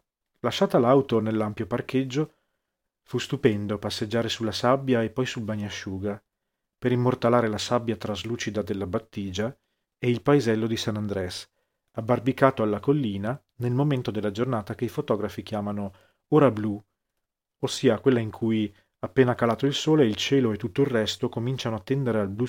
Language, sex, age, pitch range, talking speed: Italian, male, 40-59, 105-130 Hz, 155 wpm